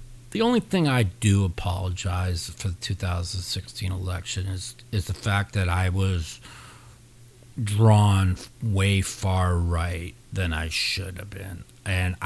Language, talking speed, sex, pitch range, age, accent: English, 130 wpm, male, 90-120 Hz, 40-59, American